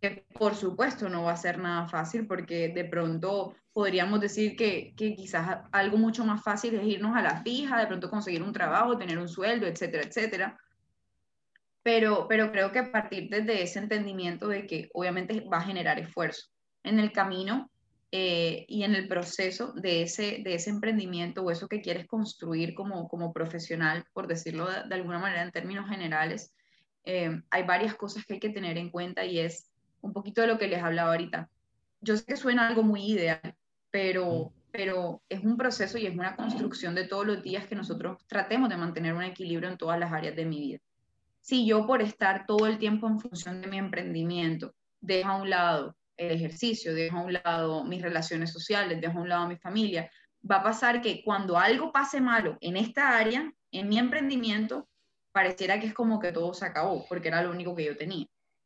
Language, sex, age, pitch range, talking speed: Spanish, female, 10-29, 170-215 Hz, 200 wpm